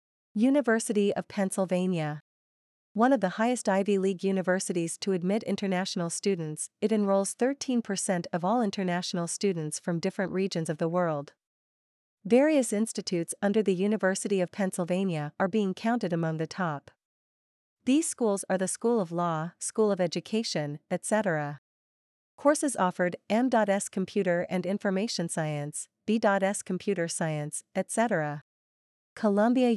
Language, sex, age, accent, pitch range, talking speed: English, female, 40-59, American, 175-215 Hz, 125 wpm